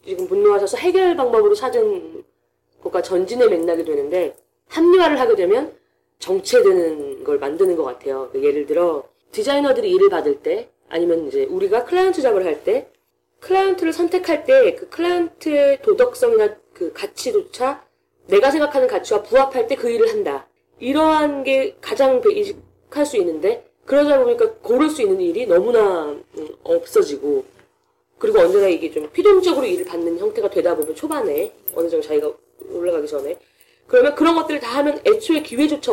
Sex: female